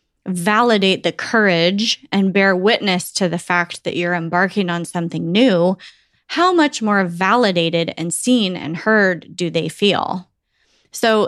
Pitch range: 180-220 Hz